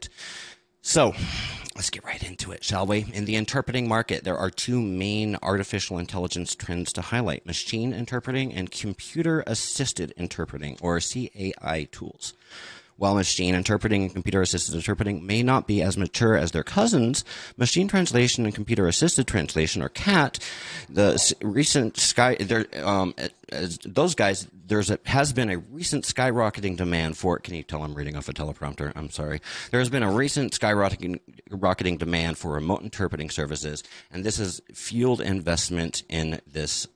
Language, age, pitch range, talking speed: English, 30-49, 85-110 Hz, 155 wpm